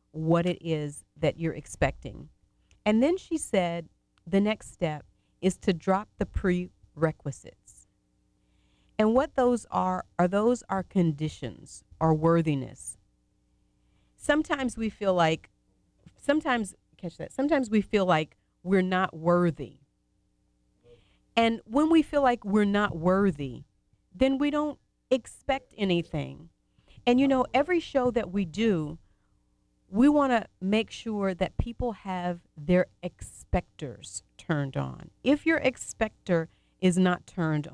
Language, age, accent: English, 40-59, American